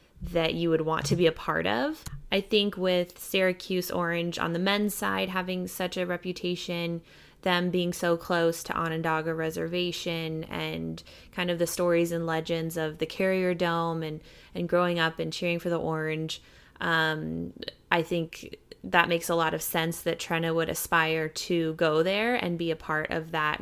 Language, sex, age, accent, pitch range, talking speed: English, female, 20-39, American, 160-175 Hz, 180 wpm